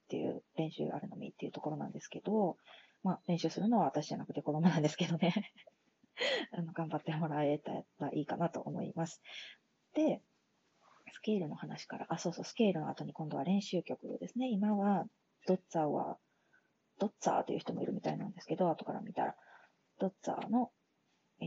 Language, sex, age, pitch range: Japanese, female, 20-39, 165-210 Hz